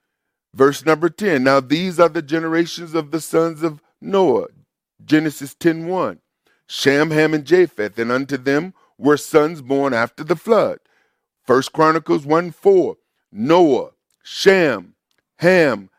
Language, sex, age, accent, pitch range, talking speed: English, male, 50-69, American, 130-175 Hz, 135 wpm